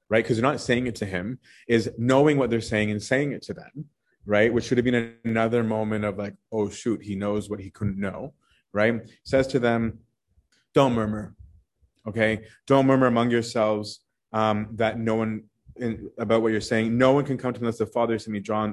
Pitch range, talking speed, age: 105-130 Hz, 220 wpm, 30-49